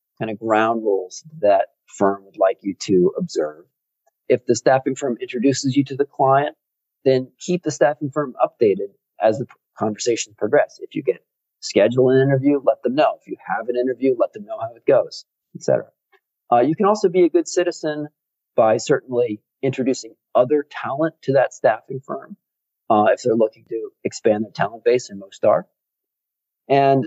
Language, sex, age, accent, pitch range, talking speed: English, male, 40-59, American, 120-165 Hz, 180 wpm